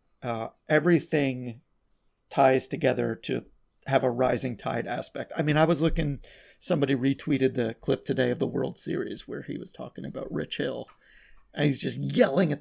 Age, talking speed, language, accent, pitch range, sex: 30-49, 170 wpm, English, American, 135-180 Hz, male